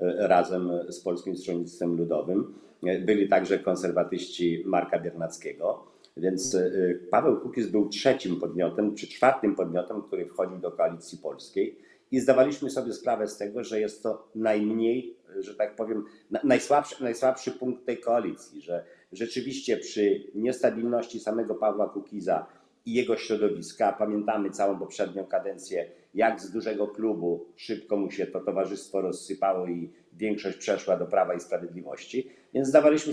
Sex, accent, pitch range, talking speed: male, native, 105-135 Hz, 135 wpm